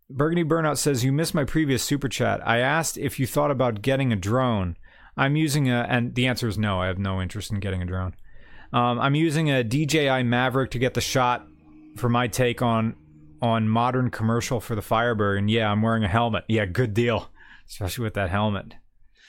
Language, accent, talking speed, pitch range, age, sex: English, American, 210 wpm, 105-135 Hz, 30-49, male